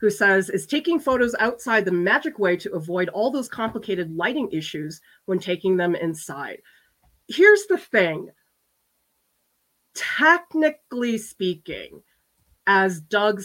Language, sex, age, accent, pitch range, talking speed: English, female, 30-49, American, 180-230 Hz, 120 wpm